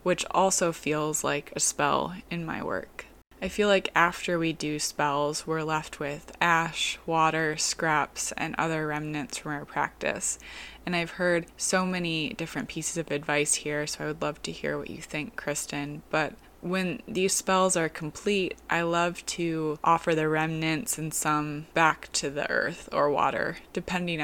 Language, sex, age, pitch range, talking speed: English, female, 20-39, 150-170 Hz, 170 wpm